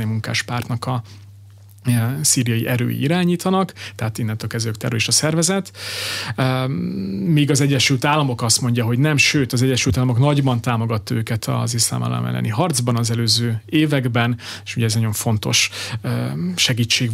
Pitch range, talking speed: 115-135 Hz, 140 wpm